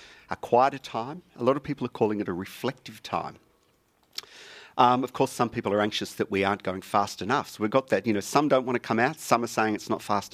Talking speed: 255 wpm